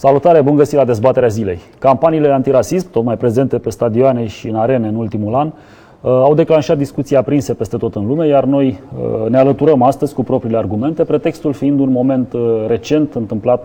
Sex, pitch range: male, 110-140 Hz